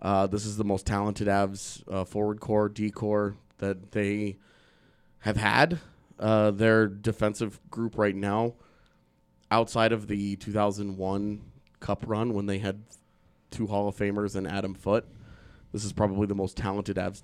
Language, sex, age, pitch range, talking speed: English, male, 20-39, 100-110 Hz, 155 wpm